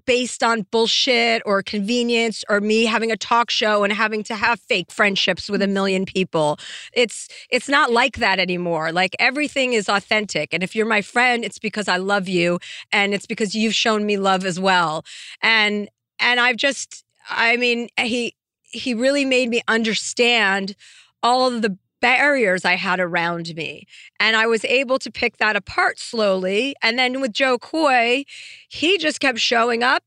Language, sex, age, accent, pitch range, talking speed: English, female, 40-59, American, 200-240 Hz, 180 wpm